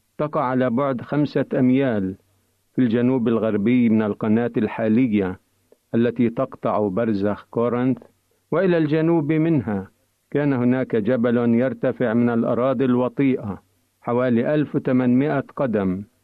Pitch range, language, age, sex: 105-130 Hz, Arabic, 50-69, male